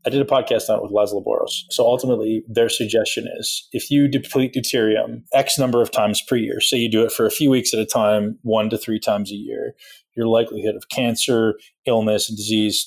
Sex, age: male, 20-39